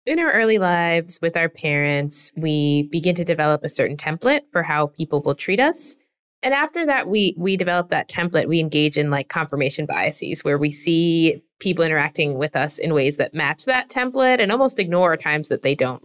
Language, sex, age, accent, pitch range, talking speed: English, female, 20-39, American, 150-190 Hz, 200 wpm